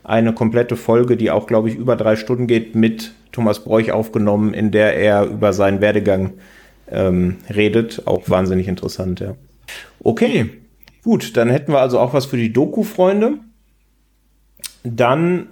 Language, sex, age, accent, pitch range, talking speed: German, male, 40-59, German, 110-130 Hz, 150 wpm